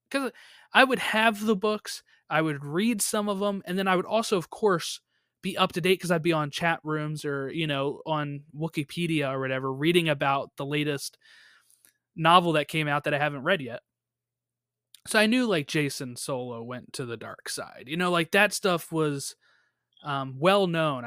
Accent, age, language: American, 20-39, English